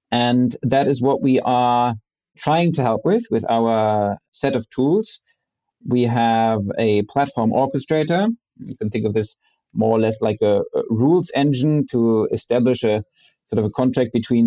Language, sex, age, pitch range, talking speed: English, male, 30-49, 110-140 Hz, 170 wpm